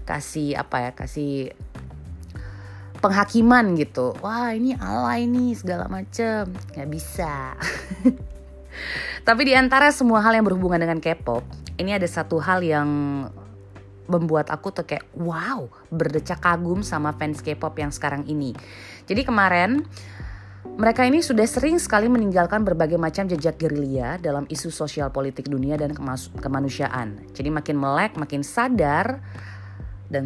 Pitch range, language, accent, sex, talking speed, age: 135-200 Hz, Indonesian, native, female, 135 wpm, 20-39